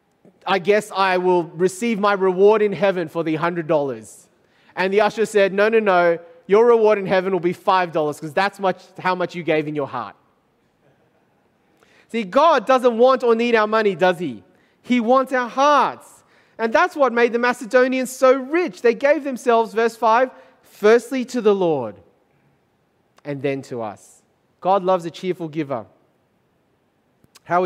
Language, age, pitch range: English, 30-49, 175-220 Hz